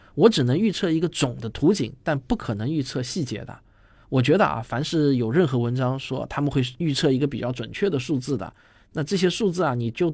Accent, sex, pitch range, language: native, male, 120-155 Hz, Chinese